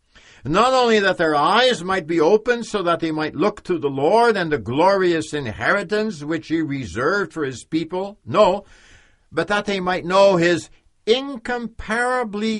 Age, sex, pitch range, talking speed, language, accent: 60-79, male, 135-205 Hz, 160 wpm, English, American